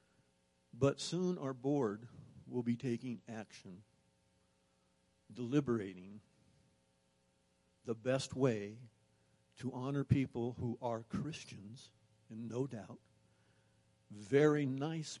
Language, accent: English, American